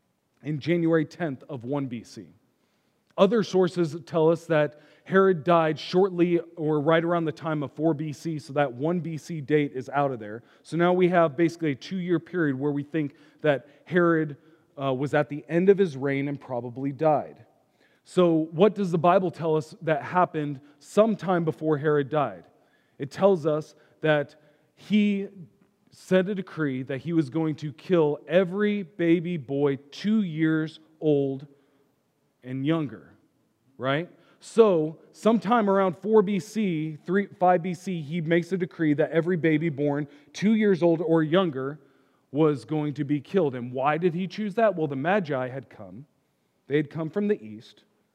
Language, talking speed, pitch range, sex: English, 165 wpm, 145-180 Hz, male